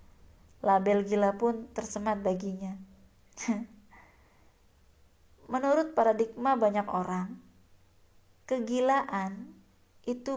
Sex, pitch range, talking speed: female, 180-210 Hz, 65 wpm